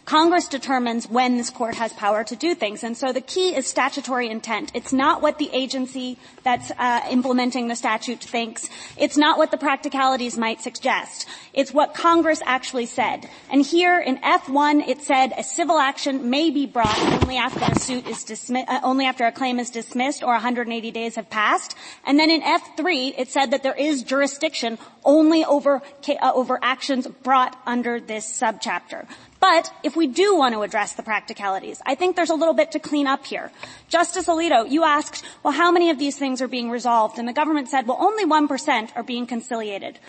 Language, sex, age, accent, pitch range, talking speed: English, female, 30-49, American, 245-310 Hz, 195 wpm